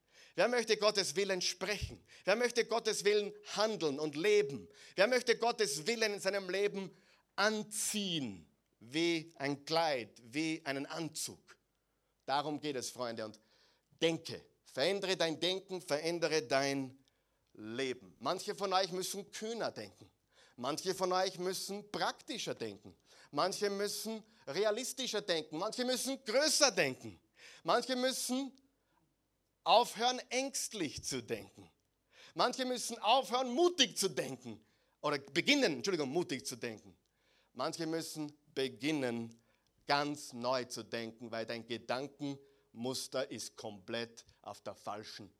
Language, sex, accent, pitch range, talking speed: German, male, German, 130-205 Hz, 120 wpm